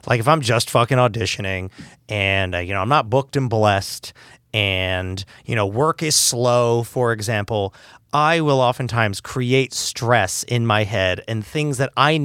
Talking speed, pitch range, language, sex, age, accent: 170 wpm, 115-165 Hz, English, male, 30-49, American